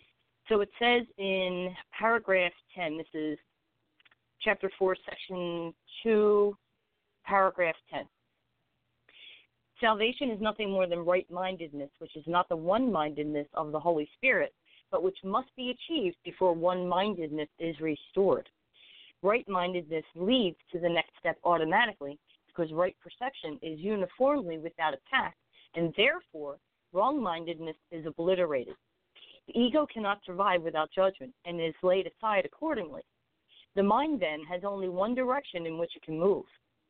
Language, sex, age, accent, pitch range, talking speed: English, female, 40-59, American, 165-220 Hz, 130 wpm